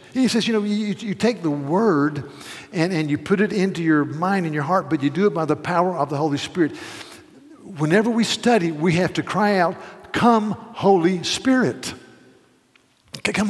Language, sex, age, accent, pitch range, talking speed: English, male, 50-69, American, 155-210 Hz, 190 wpm